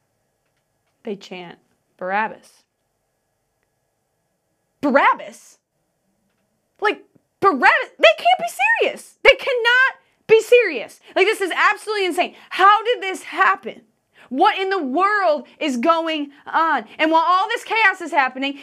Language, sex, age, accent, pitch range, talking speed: English, female, 20-39, American, 225-365 Hz, 120 wpm